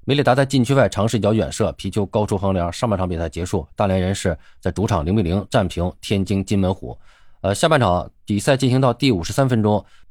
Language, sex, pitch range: Chinese, male, 90-120 Hz